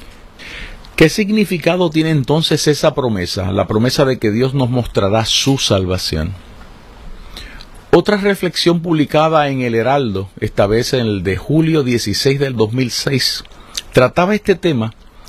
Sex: male